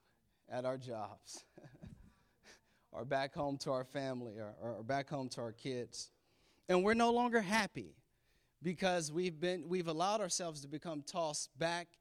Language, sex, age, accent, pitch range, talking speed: English, male, 30-49, American, 135-180 Hz, 155 wpm